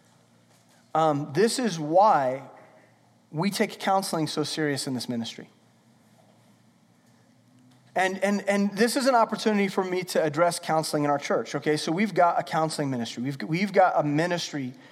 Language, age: English, 30-49